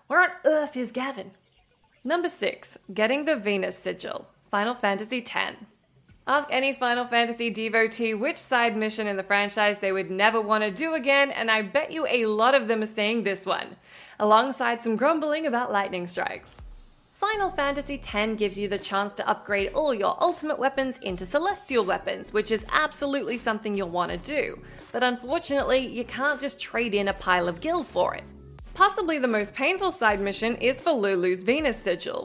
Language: English